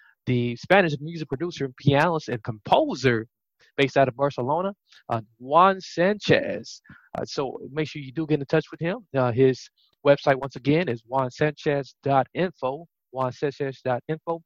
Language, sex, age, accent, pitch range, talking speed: English, male, 20-39, American, 135-175 Hz, 135 wpm